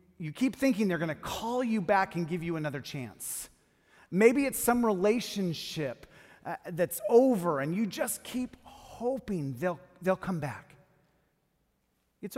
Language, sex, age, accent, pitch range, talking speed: English, male, 40-59, American, 150-210 Hz, 150 wpm